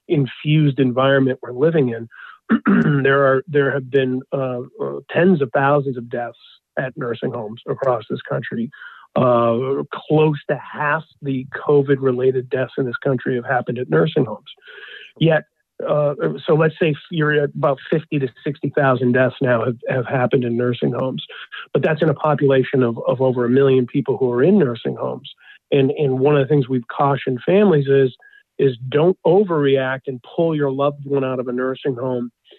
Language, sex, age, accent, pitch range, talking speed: English, male, 40-59, American, 130-145 Hz, 180 wpm